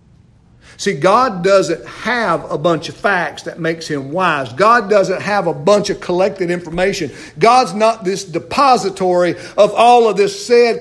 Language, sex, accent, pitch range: English, male, American, 180-305 Hz